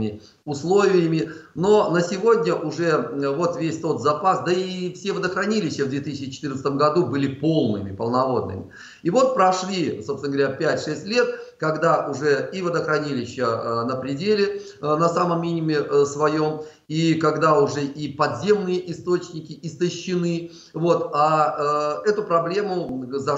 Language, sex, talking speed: Russian, male, 125 wpm